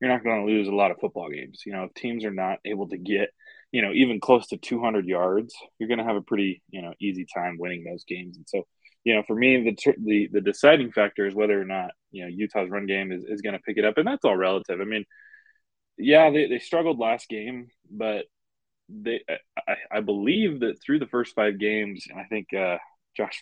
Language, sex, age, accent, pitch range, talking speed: English, male, 20-39, American, 95-120 Hz, 240 wpm